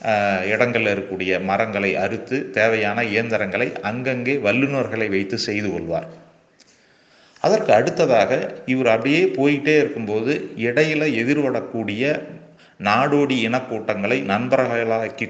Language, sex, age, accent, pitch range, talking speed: Tamil, male, 30-49, native, 95-125 Hz, 80 wpm